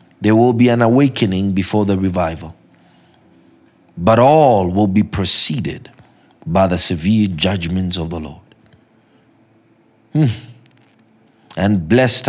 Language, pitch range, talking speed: English, 90-115 Hz, 110 wpm